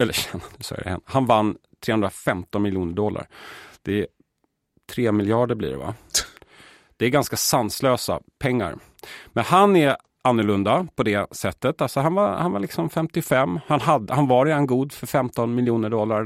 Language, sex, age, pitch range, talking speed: Swedish, male, 30-49, 105-135 Hz, 165 wpm